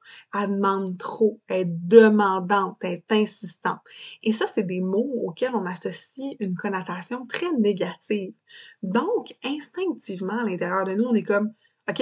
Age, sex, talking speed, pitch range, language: 20-39, female, 150 wpm, 190-240 Hz, French